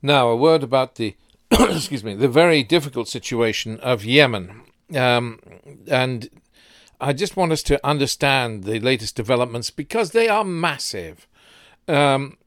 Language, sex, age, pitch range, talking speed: English, male, 50-69, 115-150 Hz, 140 wpm